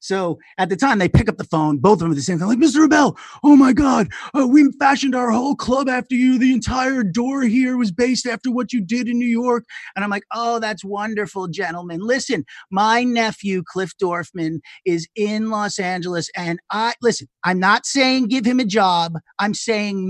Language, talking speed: English, 210 wpm